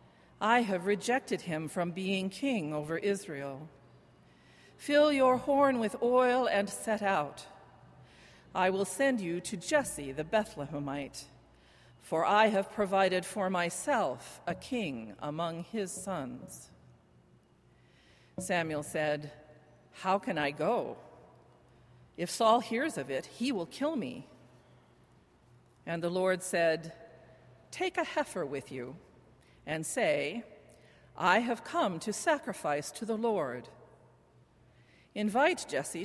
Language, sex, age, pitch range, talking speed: English, female, 50-69, 140-220 Hz, 120 wpm